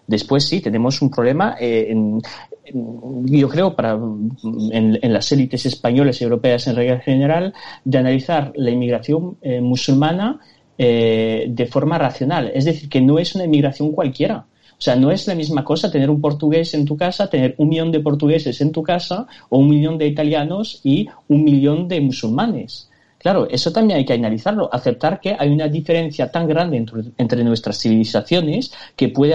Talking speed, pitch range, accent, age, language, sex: 180 wpm, 120-155 Hz, Spanish, 30-49, Spanish, male